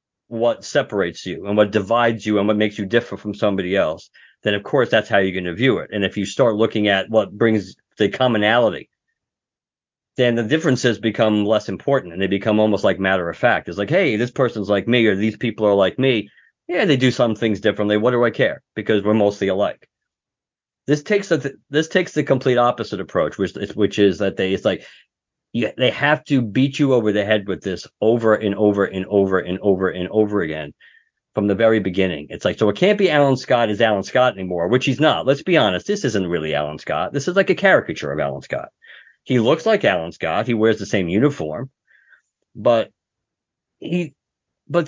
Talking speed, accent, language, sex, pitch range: 215 wpm, American, English, male, 105-145 Hz